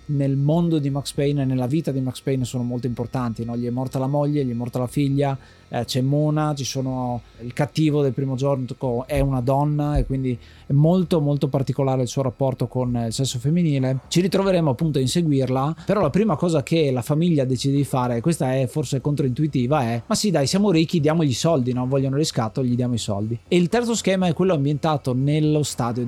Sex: male